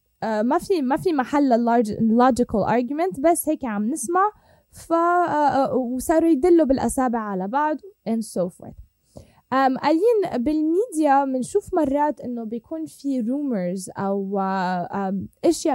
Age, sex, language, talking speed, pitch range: 10-29, female, Arabic, 120 wpm, 205-275 Hz